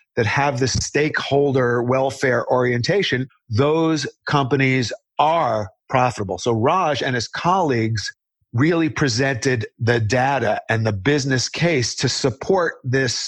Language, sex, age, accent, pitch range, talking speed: English, male, 50-69, American, 120-145 Hz, 115 wpm